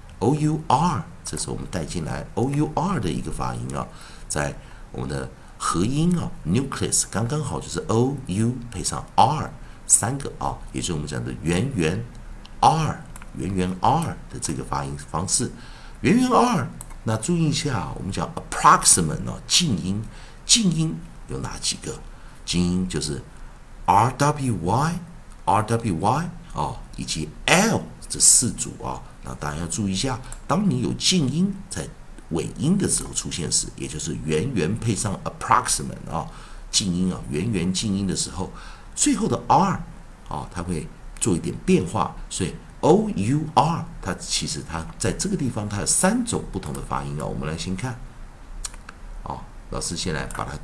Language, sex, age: Chinese, male, 50-69